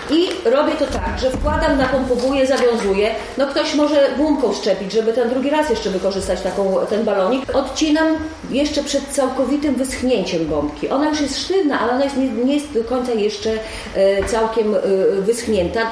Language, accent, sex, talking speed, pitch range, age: Polish, native, female, 155 wpm, 160-245 Hz, 40-59